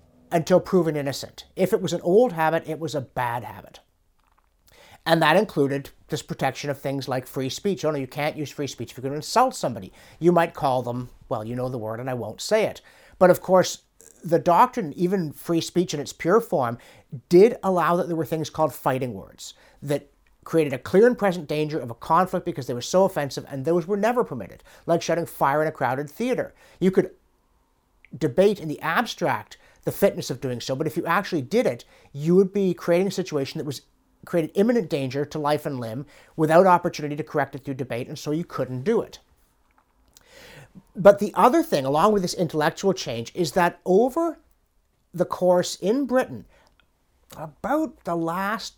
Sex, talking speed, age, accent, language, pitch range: male, 200 wpm, 50-69, American, English, 140-190 Hz